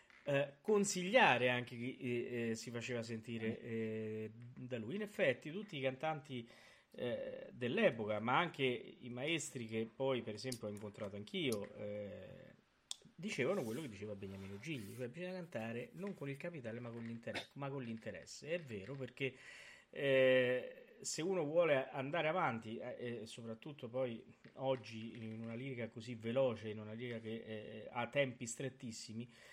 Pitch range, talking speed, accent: 115-130 Hz, 150 wpm, native